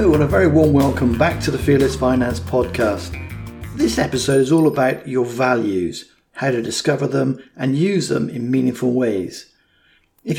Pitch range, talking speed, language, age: 115-155 Hz, 175 wpm, English, 50-69